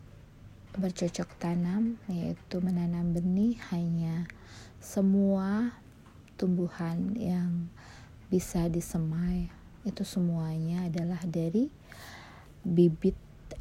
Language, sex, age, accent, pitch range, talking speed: Indonesian, female, 20-39, native, 160-200 Hz, 70 wpm